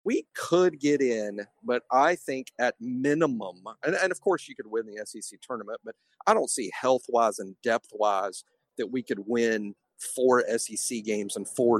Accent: American